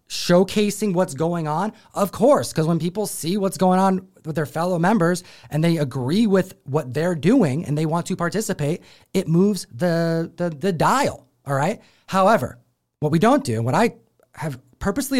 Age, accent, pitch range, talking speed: 30-49, American, 140-190 Hz, 180 wpm